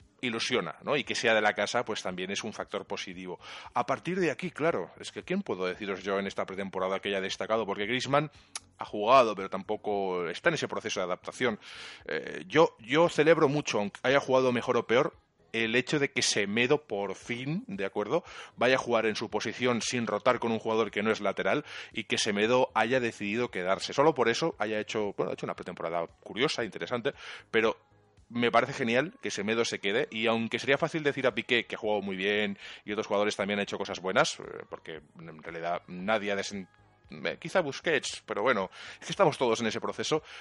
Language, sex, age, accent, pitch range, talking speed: Spanish, male, 30-49, Spanish, 100-125 Hz, 210 wpm